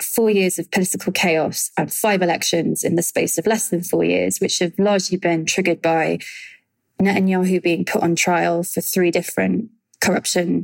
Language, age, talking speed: English, 20-39, 175 wpm